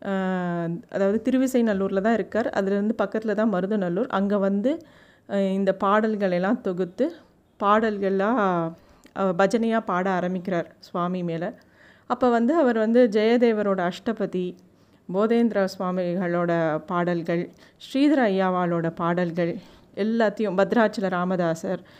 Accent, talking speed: native, 100 wpm